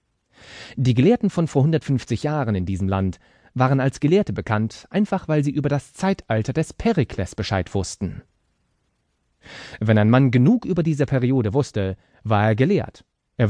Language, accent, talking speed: English, German, 155 wpm